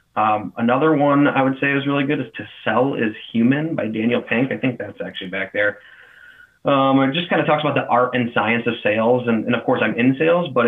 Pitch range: 105-130 Hz